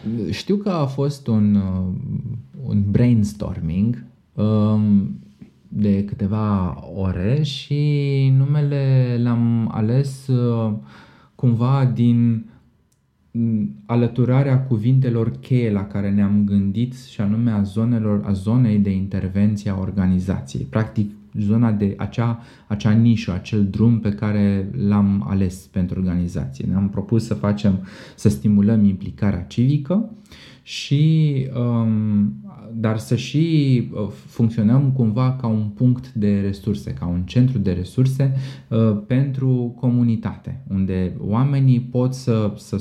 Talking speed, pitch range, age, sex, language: 105 wpm, 100-130 Hz, 20-39, male, Romanian